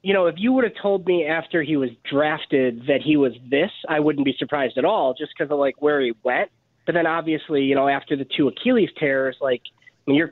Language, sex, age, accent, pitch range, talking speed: English, male, 20-39, American, 145-175 Hz, 240 wpm